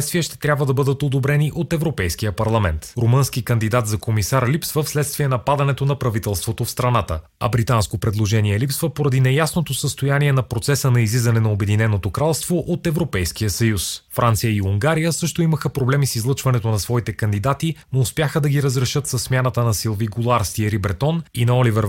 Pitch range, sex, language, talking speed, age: 110-145 Hz, male, Bulgarian, 175 wpm, 30-49